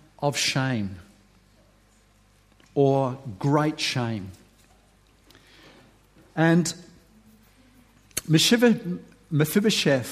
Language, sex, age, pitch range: English, male, 50-69, 120-155 Hz